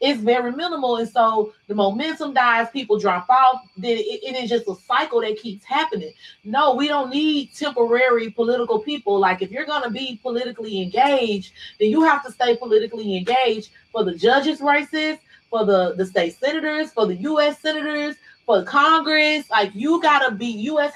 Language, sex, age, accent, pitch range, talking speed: English, female, 30-49, American, 210-280 Hz, 185 wpm